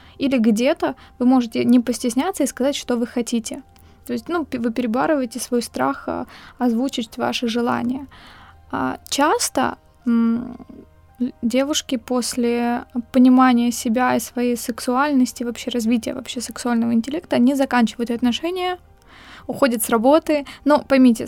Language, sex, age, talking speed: Ukrainian, female, 20-39, 130 wpm